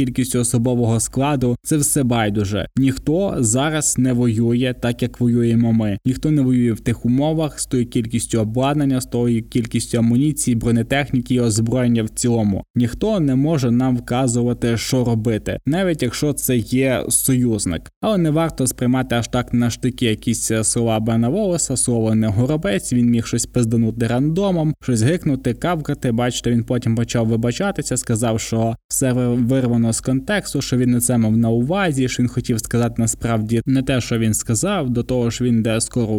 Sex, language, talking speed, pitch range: male, Ukrainian, 165 wpm, 115-135 Hz